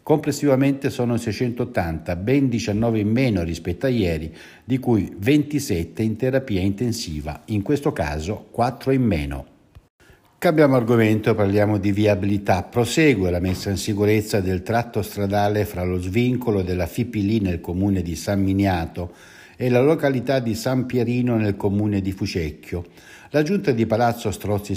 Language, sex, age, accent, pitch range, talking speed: Italian, male, 60-79, native, 95-125 Hz, 145 wpm